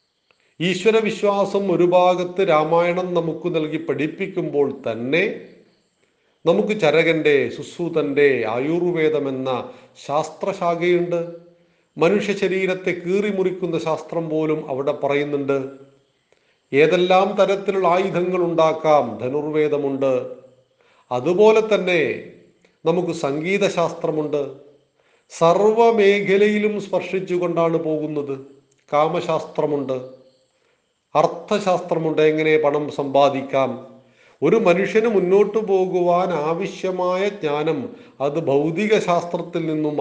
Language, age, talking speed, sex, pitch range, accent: Malayalam, 40-59, 65 wpm, male, 150-190 Hz, native